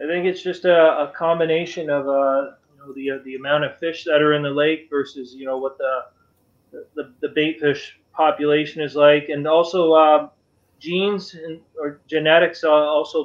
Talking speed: 190 wpm